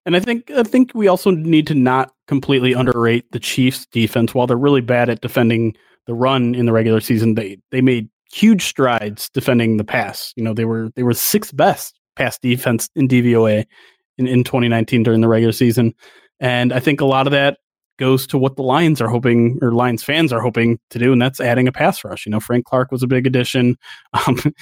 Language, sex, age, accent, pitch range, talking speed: English, male, 30-49, American, 120-140 Hz, 220 wpm